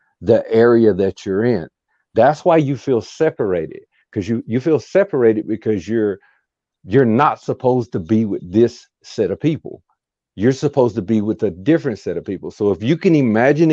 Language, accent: English, American